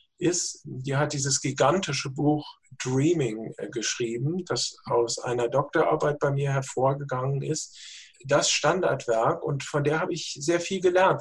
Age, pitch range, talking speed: 50-69, 140-180 Hz, 140 wpm